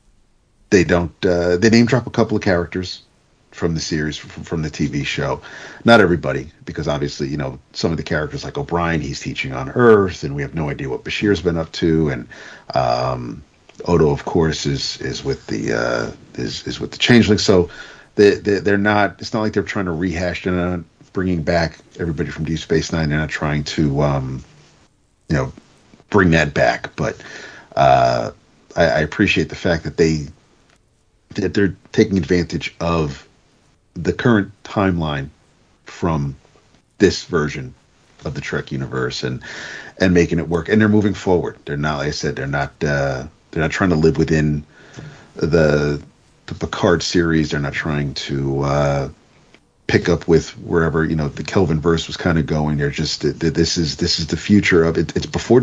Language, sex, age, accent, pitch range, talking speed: English, male, 50-69, American, 75-95 Hz, 185 wpm